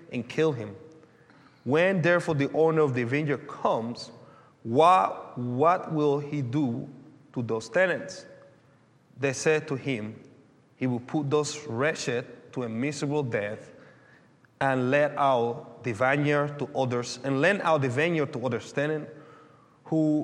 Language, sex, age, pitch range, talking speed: English, male, 30-49, 120-155 Hz, 140 wpm